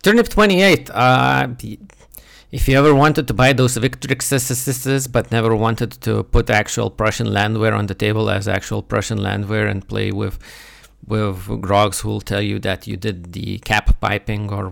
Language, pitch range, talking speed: English, 100-120 Hz, 170 wpm